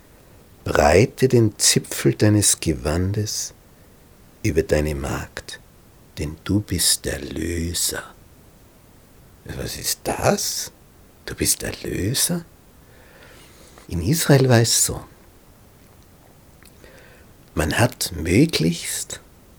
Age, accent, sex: 60-79, Austrian, male